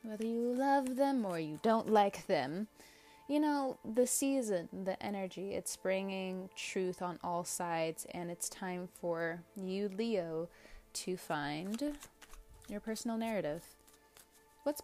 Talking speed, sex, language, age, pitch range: 135 wpm, female, English, 20-39, 170-205 Hz